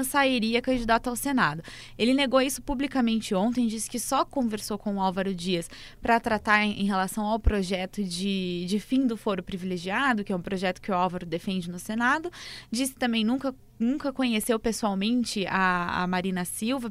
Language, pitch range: Portuguese, 195-255 Hz